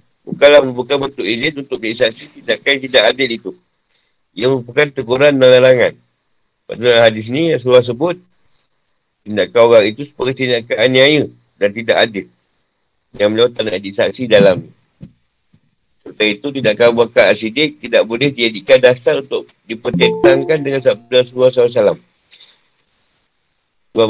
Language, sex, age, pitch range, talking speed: Malay, male, 50-69, 110-145 Hz, 125 wpm